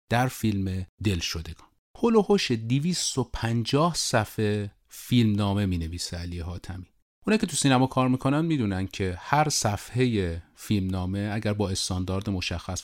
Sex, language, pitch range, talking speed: male, Persian, 90-130 Hz, 145 wpm